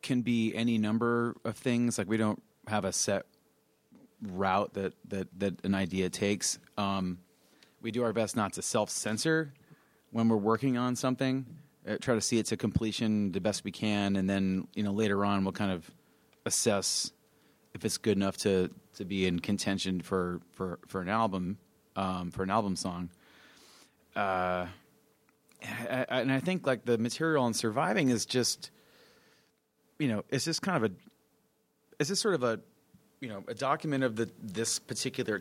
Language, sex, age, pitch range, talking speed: English, male, 30-49, 100-125 Hz, 175 wpm